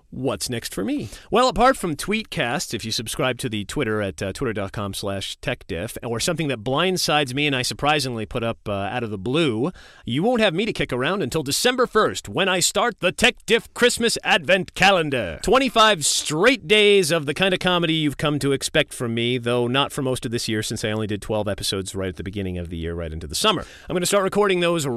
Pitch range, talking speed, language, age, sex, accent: 100-160 Hz, 230 wpm, English, 40-59, male, American